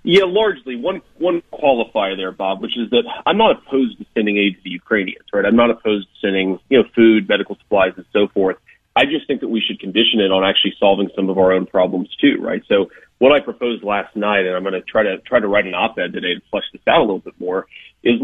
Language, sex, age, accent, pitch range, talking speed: English, male, 30-49, American, 100-120 Hz, 255 wpm